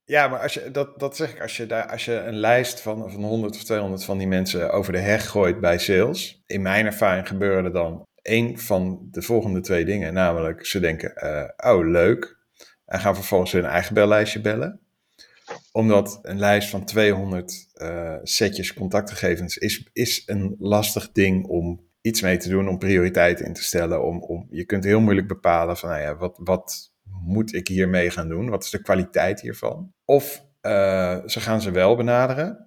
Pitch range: 90-110 Hz